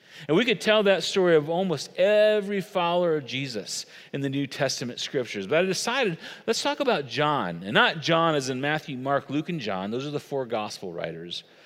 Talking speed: 205 wpm